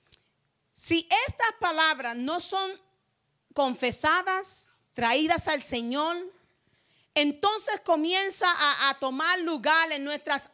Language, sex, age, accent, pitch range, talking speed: English, female, 40-59, American, 285-365 Hz, 95 wpm